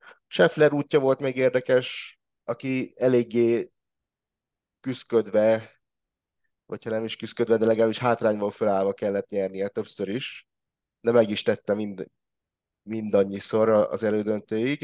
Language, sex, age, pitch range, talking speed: Hungarian, male, 30-49, 100-115 Hz, 115 wpm